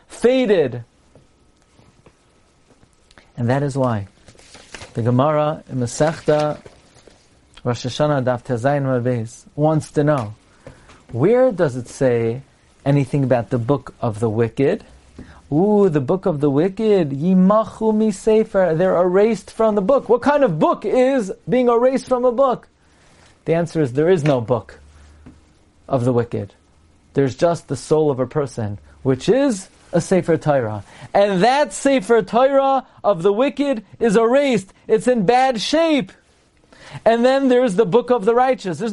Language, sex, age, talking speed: English, male, 40-59, 145 wpm